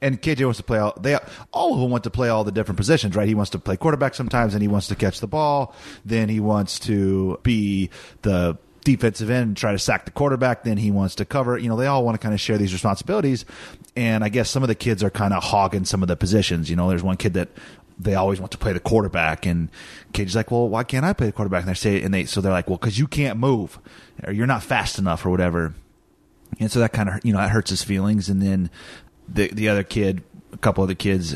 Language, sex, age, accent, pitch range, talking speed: English, male, 30-49, American, 95-115 Hz, 270 wpm